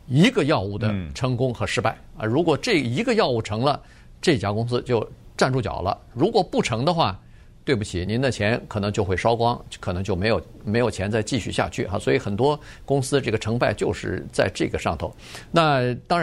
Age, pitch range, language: 50-69, 105-145 Hz, Chinese